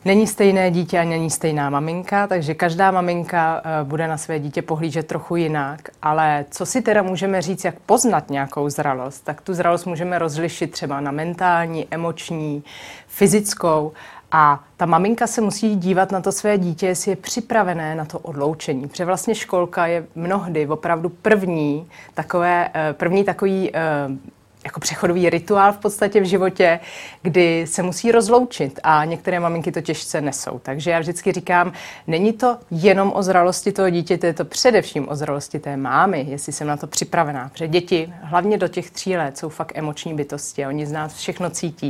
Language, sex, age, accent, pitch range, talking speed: Czech, female, 30-49, native, 155-185 Hz, 170 wpm